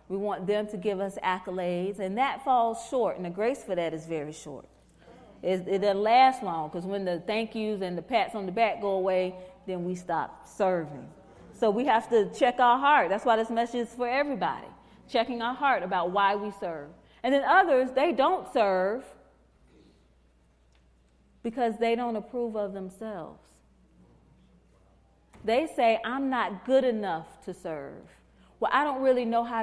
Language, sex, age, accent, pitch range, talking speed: English, female, 30-49, American, 165-235 Hz, 180 wpm